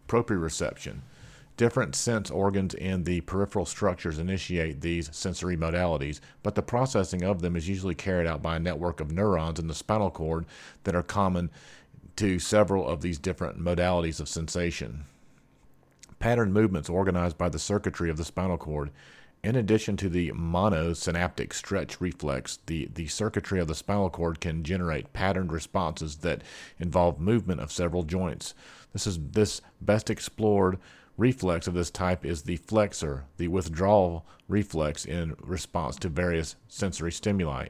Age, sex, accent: 40-59, male, American